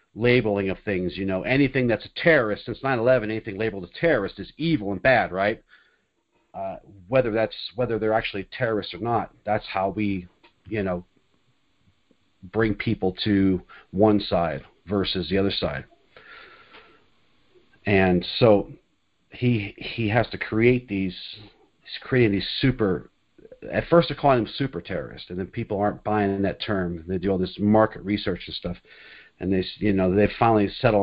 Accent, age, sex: American, 40-59, male